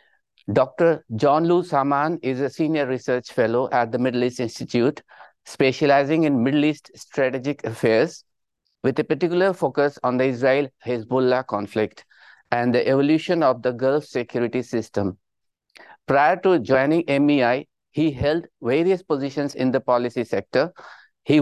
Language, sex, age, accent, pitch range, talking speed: English, male, 50-69, Indian, 125-150 Hz, 140 wpm